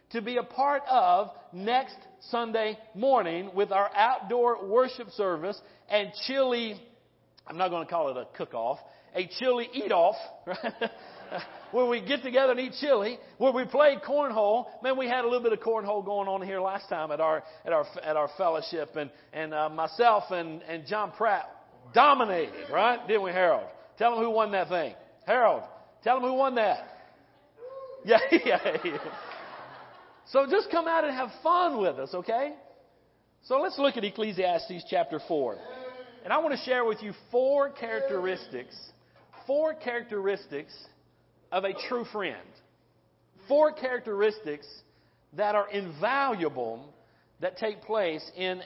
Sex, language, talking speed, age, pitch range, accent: male, English, 155 wpm, 50-69, 185-255 Hz, American